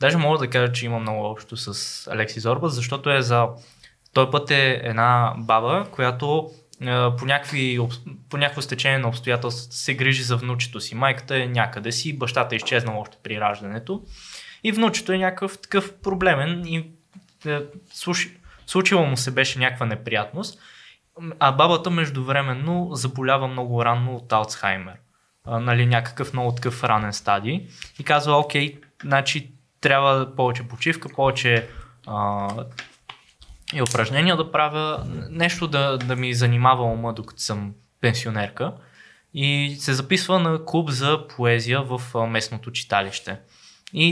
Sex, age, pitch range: male, 20-39, 120-155 Hz